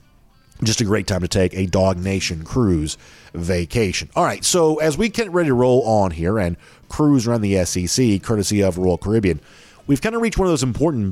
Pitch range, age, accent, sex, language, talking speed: 100-125 Hz, 40-59, American, male, English, 210 wpm